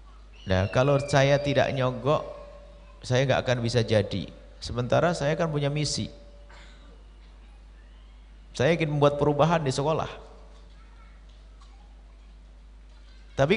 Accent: native